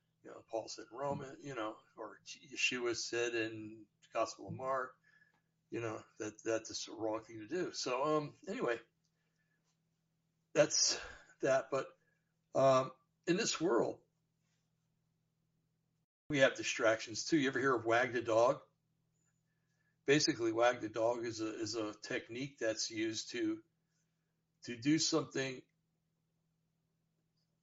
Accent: American